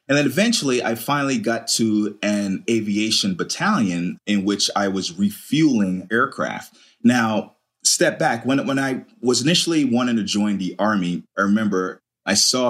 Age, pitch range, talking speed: 30-49, 95-125 Hz, 155 wpm